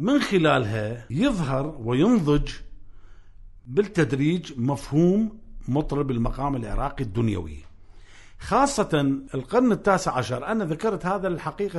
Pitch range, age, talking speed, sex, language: 120-165 Hz, 50-69, 90 wpm, male, Arabic